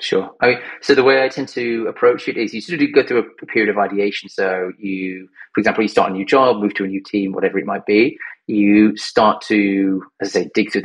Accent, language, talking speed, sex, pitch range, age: British, English, 250 wpm, male, 95-115 Hz, 30-49